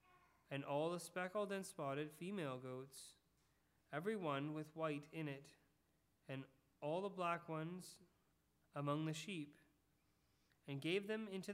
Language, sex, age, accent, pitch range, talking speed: English, male, 30-49, American, 145-180 Hz, 135 wpm